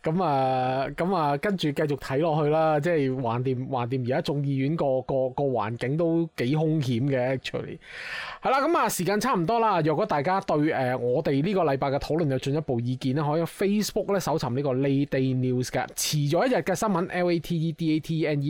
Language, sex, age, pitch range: Chinese, male, 20-39, 140-205 Hz